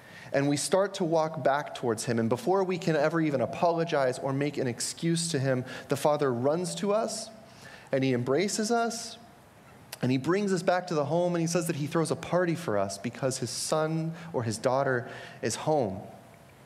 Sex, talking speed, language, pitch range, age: male, 200 wpm, English, 120-170 Hz, 30-49